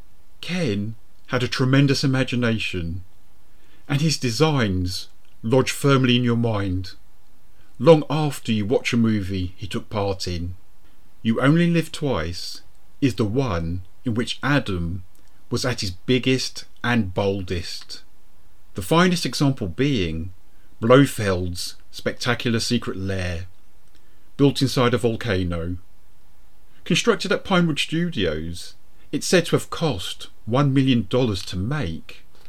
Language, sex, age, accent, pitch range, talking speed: English, male, 40-59, British, 95-130 Hz, 120 wpm